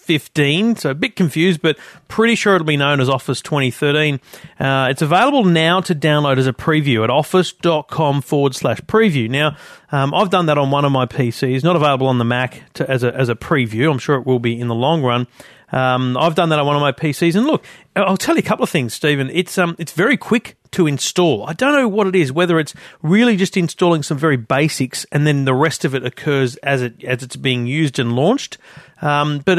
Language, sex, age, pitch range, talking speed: English, male, 40-59, 130-170 Hz, 235 wpm